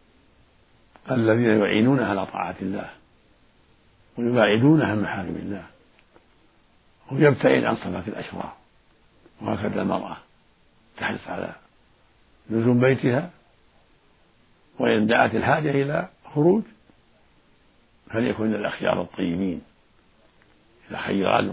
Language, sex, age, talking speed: Arabic, male, 60-79, 80 wpm